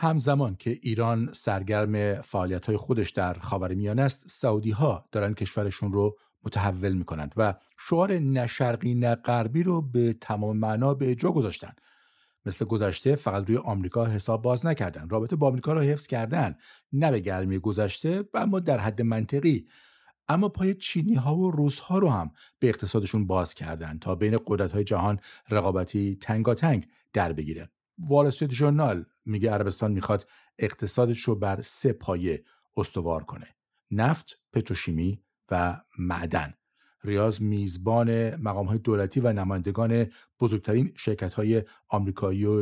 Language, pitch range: Persian, 100-130 Hz